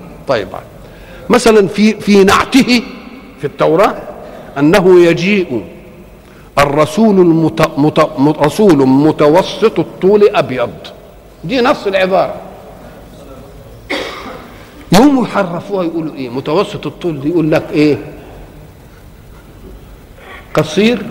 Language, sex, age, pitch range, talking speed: Arabic, male, 50-69, 155-215 Hz, 80 wpm